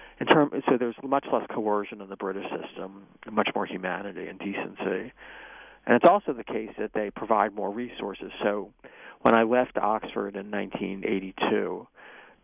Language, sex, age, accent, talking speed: English, male, 40-59, American, 160 wpm